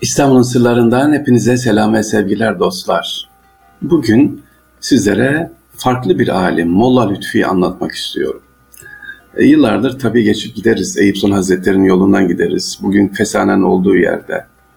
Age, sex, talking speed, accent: 50-69, male, 120 wpm, native